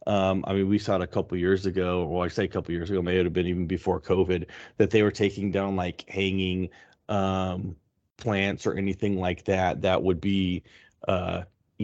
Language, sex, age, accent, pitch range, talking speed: English, male, 30-49, American, 90-100 Hz, 205 wpm